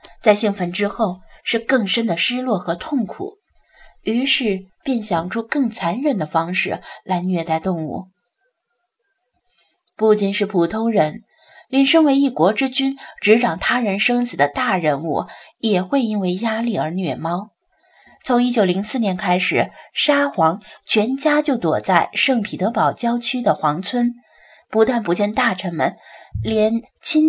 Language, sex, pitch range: Chinese, female, 185-245 Hz